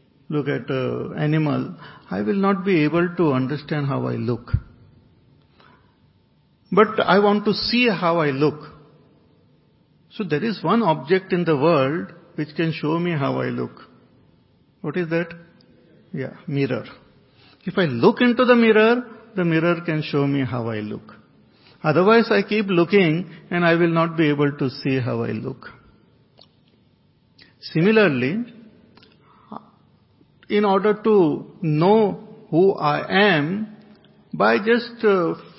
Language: English